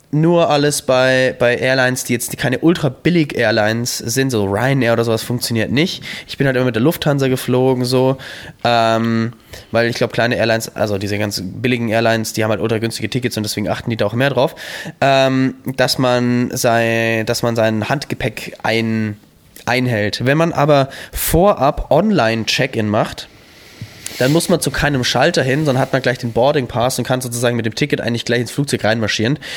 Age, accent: 20-39, German